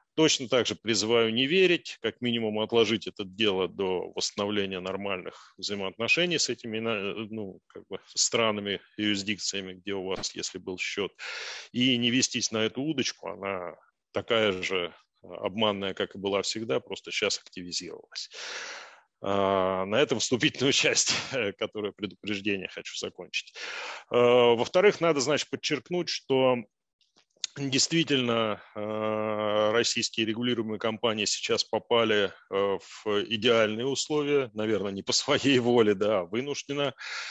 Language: Turkish